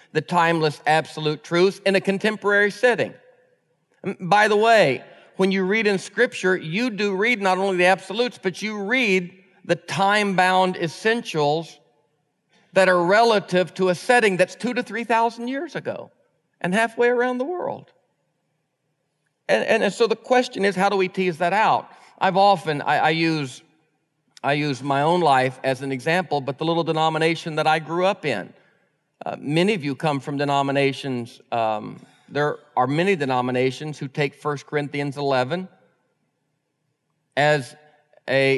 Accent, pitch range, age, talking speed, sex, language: American, 145-195 Hz, 50-69, 155 wpm, male, English